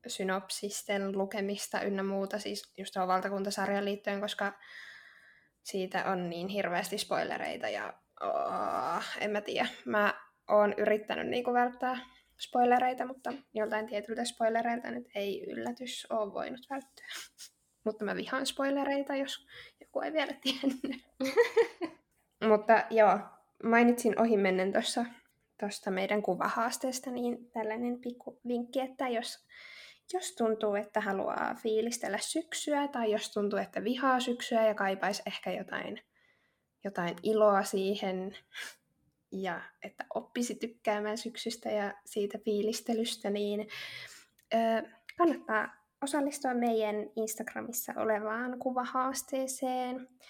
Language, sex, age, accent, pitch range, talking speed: Finnish, female, 10-29, native, 205-250 Hz, 110 wpm